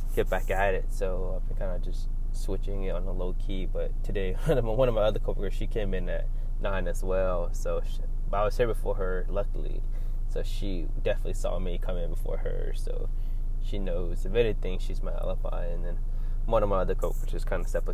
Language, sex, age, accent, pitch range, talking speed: English, male, 20-39, American, 100-120 Hz, 220 wpm